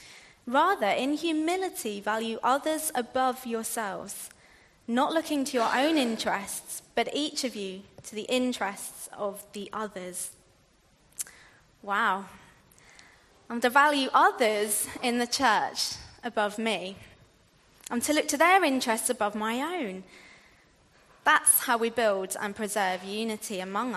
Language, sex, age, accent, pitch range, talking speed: English, female, 20-39, British, 210-290 Hz, 125 wpm